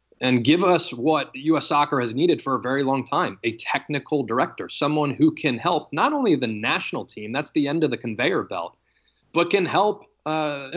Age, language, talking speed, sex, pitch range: 20-39, English, 200 wpm, male, 120-150 Hz